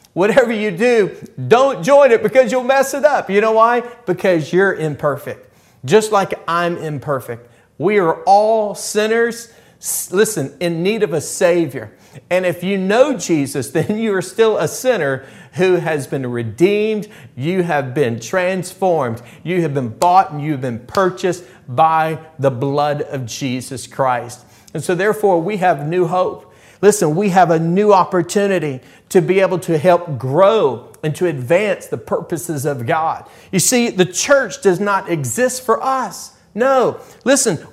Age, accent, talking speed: 40-59, American, 160 wpm